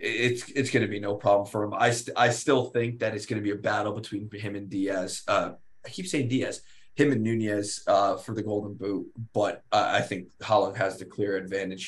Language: English